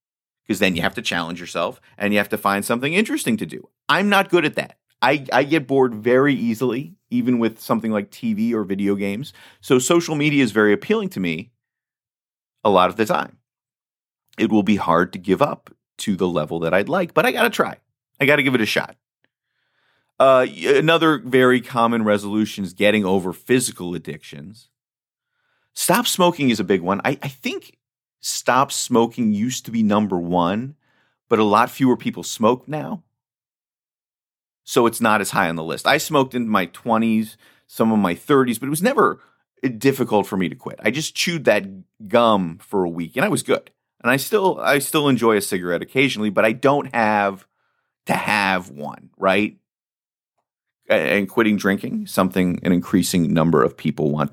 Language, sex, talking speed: English, male, 190 wpm